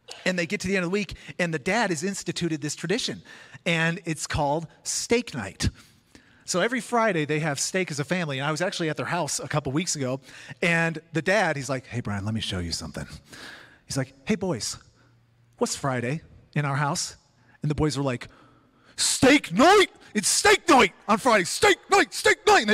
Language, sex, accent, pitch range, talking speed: English, male, American, 155-210 Hz, 210 wpm